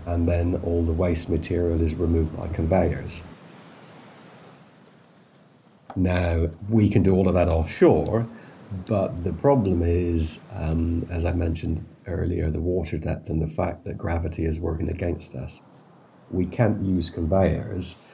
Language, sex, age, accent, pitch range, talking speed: English, male, 50-69, British, 85-100 Hz, 140 wpm